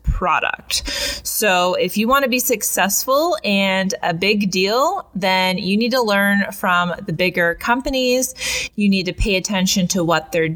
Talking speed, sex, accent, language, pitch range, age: 165 wpm, female, American, English, 175-220 Hz, 20-39